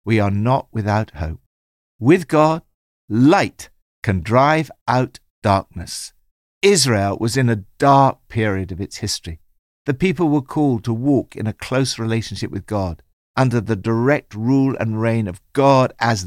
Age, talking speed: 60-79, 155 wpm